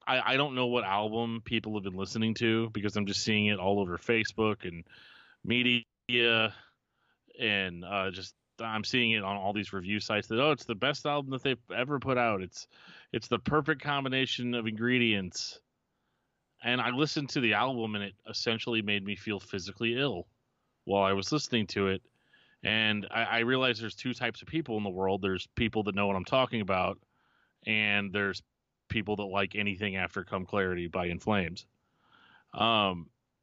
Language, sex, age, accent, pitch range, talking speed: English, male, 30-49, American, 100-120 Hz, 185 wpm